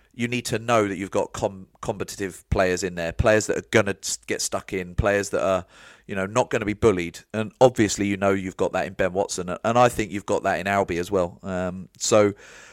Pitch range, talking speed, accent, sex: 95-110 Hz, 245 wpm, British, male